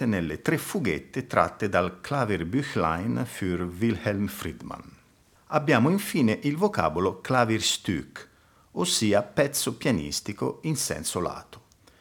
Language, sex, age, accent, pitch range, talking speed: Italian, male, 50-69, native, 95-130 Hz, 100 wpm